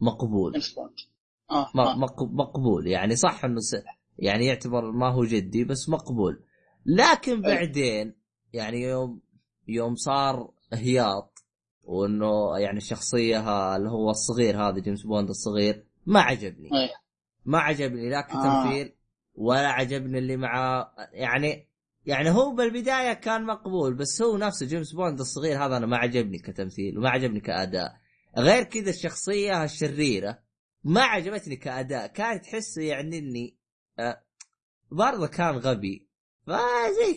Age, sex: 20-39, male